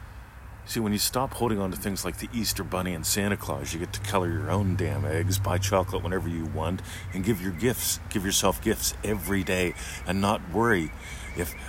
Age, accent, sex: 40-59, American, male